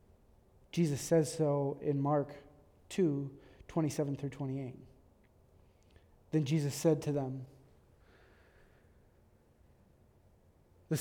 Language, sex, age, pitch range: English, male, 30-49, 125-175 Hz